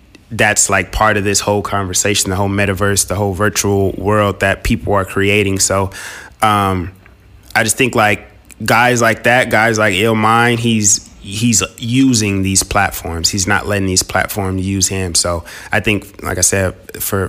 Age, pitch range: 20-39, 95-110 Hz